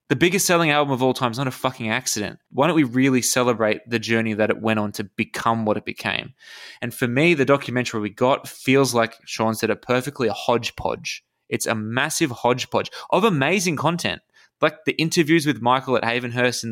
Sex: male